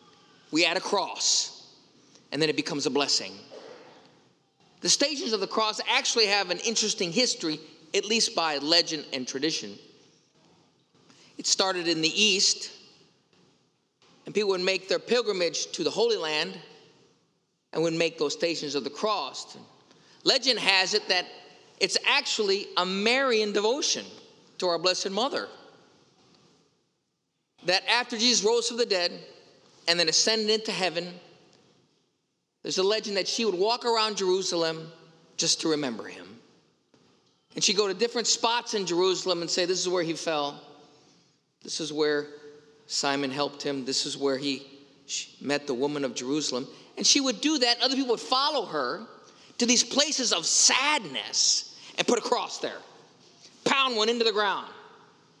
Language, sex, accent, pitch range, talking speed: English, male, American, 155-240 Hz, 155 wpm